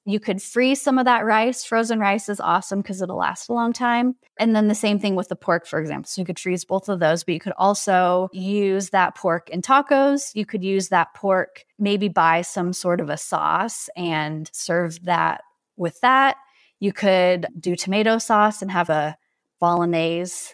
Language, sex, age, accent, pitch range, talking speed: English, female, 20-39, American, 175-230 Hz, 200 wpm